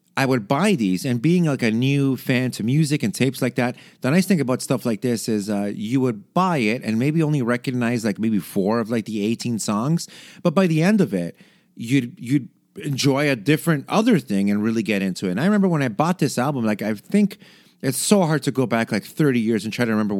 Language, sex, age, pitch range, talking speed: English, male, 30-49, 110-150 Hz, 245 wpm